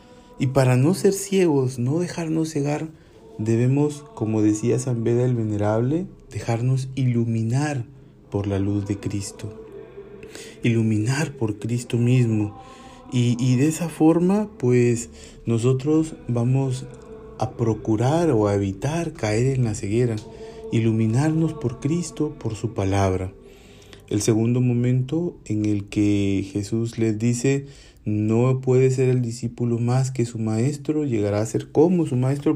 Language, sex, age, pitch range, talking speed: Spanish, male, 40-59, 110-150 Hz, 135 wpm